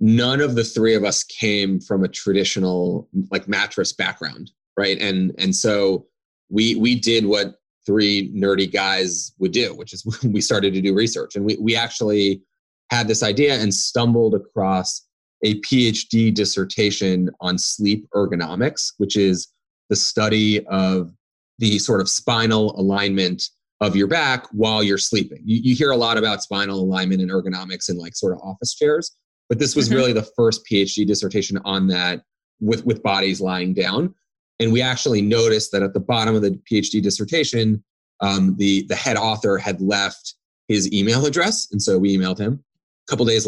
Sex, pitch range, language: male, 95-115 Hz, English